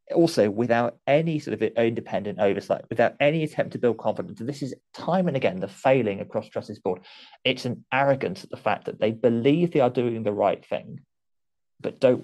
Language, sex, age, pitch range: English, male, 30-49, 105-140 Hz